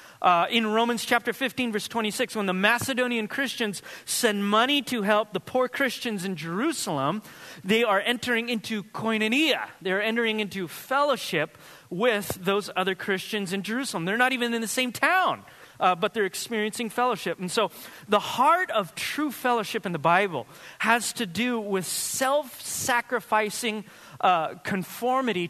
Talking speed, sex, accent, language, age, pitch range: 150 wpm, male, American, English, 30-49, 190-245 Hz